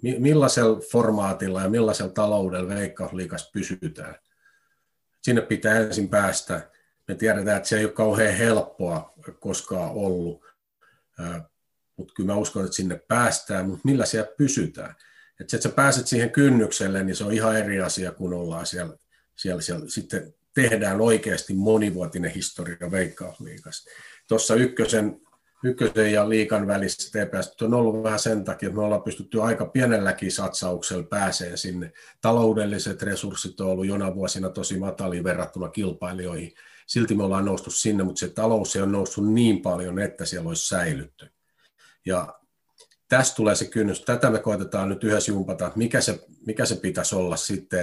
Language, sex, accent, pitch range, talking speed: Finnish, male, native, 95-115 Hz, 150 wpm